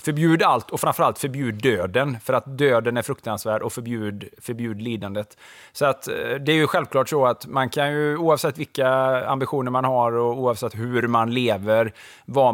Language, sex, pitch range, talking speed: English, male, 110-130 Hz, 165 wpm